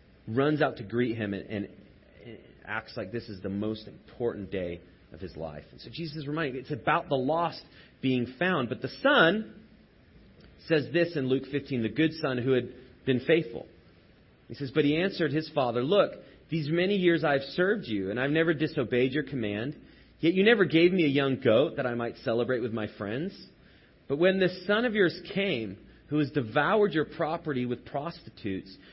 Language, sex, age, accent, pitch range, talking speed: English, male, 30-49, American, 105-155 Hz, 190 wpm